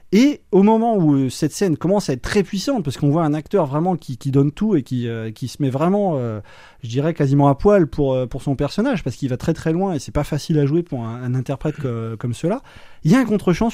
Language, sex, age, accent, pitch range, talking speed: French, male, 20-39, French, 140-180 Hz, 270 wpm